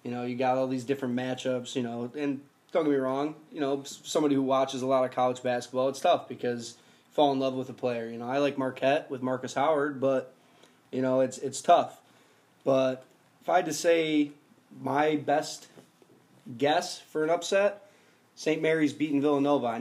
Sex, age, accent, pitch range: male, 20-39, American, 125-145 Hz